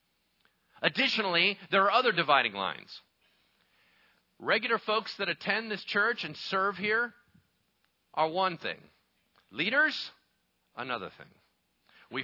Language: English